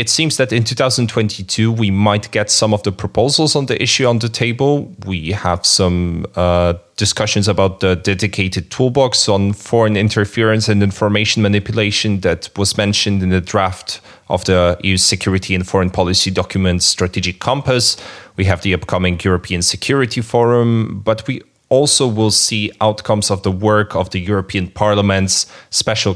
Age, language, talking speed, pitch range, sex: 30-49, English, 160 wpm, 95-115 Hz, male